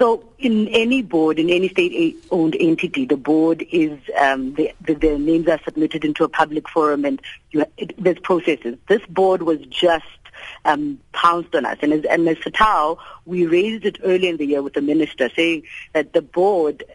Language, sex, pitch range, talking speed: English, female, 155-195 Hz, 195 wpm